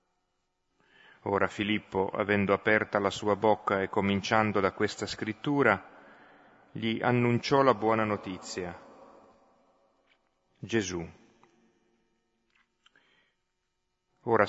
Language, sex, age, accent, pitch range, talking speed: Italian, male, 40-59, native, 95-115 Hz, 80 wpm